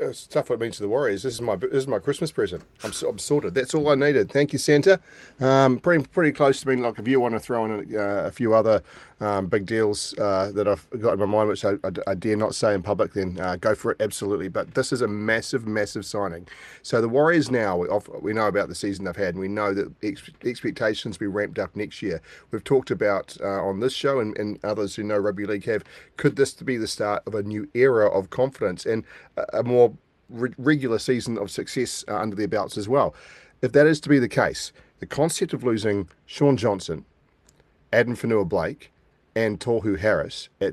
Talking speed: 235 wpm